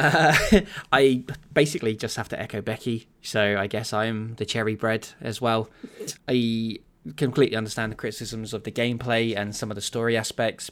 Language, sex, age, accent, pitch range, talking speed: English, male, 20-39, British, 105-130 Hz, 175 wpm